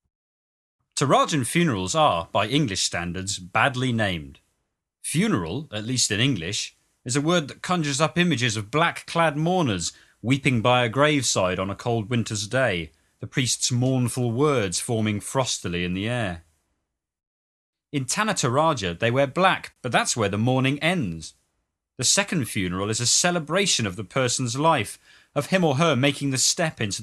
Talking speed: 155 wpm